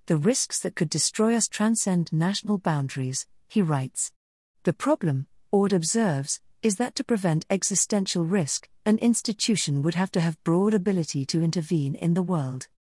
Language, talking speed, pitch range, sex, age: English, 155 wpm, 155-210 Hz, female, 50-69